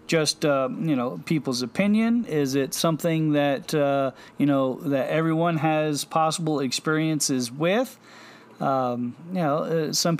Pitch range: 135-170 Hz